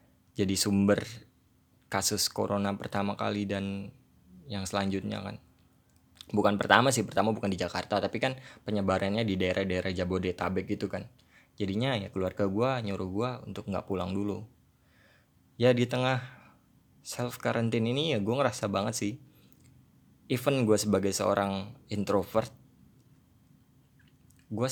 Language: Indonesian